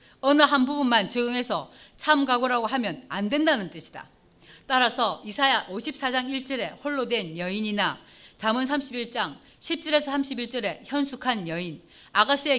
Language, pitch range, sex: Korean, 215-280 Hz, female